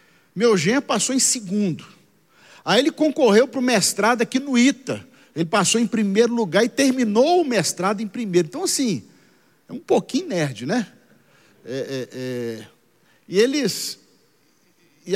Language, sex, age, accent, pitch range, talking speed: Portuguese, male, 50-69, Brazilian, 160-240 Hz, 150 wpm